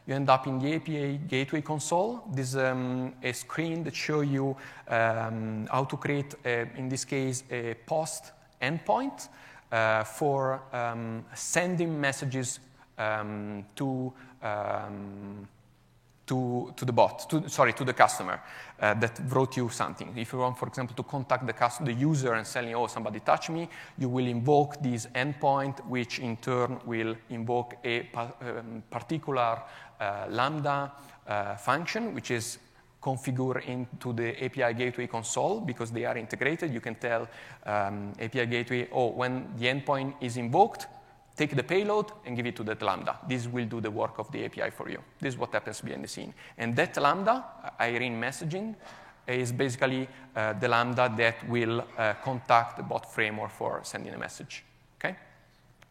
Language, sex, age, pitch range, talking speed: English, male, 30-49, 115-140 Hz, 165 wpm